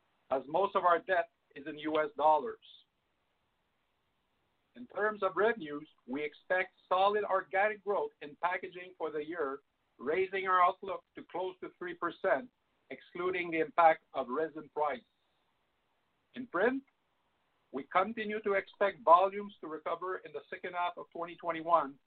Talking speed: 140 wpm